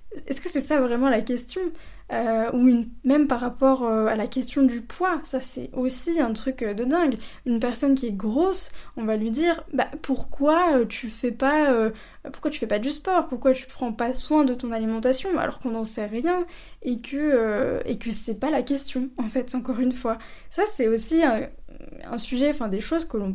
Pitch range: 230-275 Hz